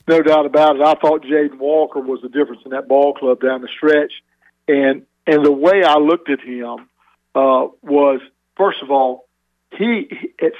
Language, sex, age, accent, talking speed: English, male, 50-69, American, 185 wpm